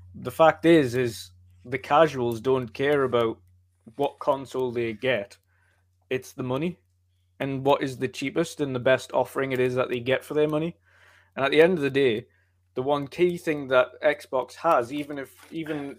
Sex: male